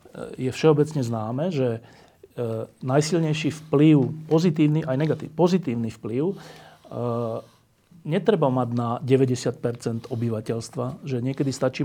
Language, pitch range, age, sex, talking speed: Slovak, 125-160 Hz, 40-59, male, 90 wpm